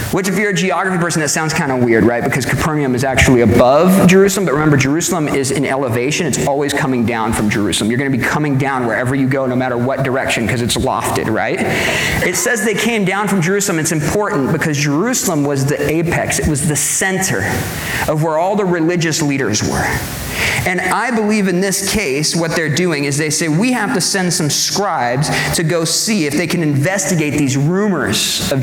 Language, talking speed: English, 210 wpm